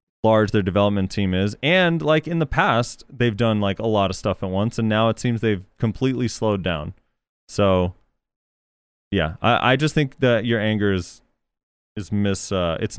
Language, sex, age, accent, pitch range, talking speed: English, male, 30-49, American, 100-125 Hz, 190 wpm